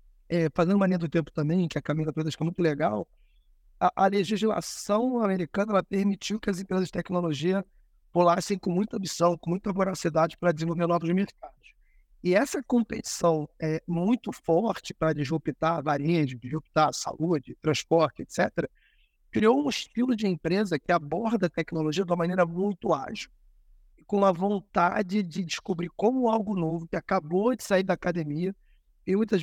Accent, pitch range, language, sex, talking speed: Brazilian, 165-200 Hz, Portuguese, male, 160 wpm